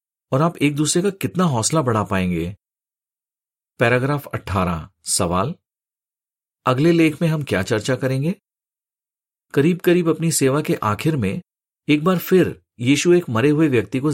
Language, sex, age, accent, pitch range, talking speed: Hindi, male, 50-69, native, 115-160 Hz, 150 wpm